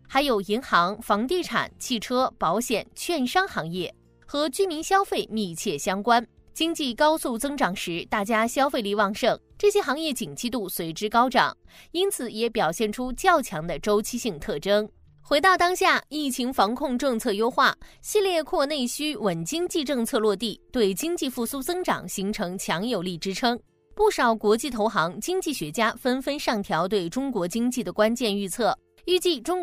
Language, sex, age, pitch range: Chinese, female, 20-39, 210-305 Hz